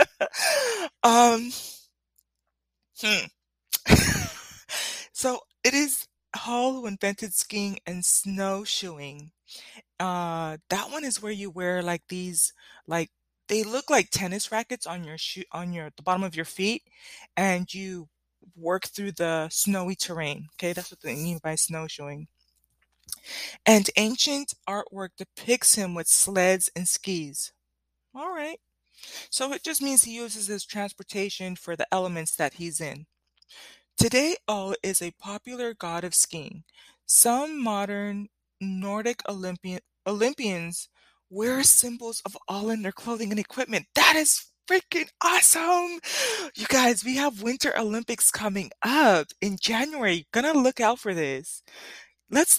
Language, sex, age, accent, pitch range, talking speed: English, female, 20-39, American, 170-240 Hz, 130 wpm